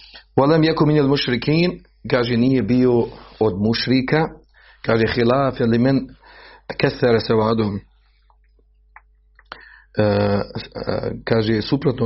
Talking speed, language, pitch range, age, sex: 90 wpm, Croatian, 110-130 Hz, 40-59, male